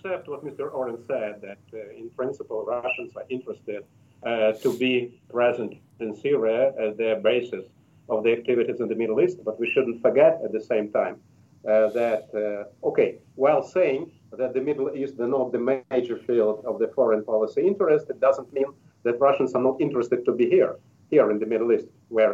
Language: English